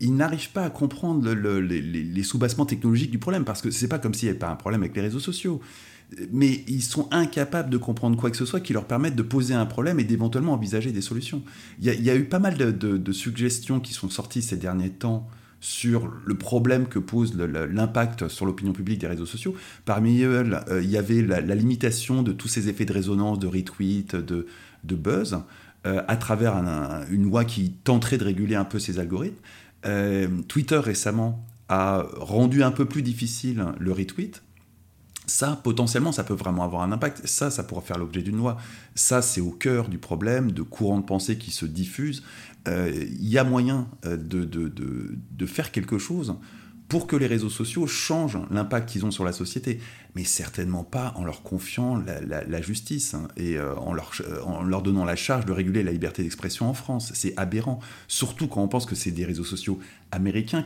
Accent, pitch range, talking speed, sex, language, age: French, 95-125 Hz, 215 wpm, male, French, 30-49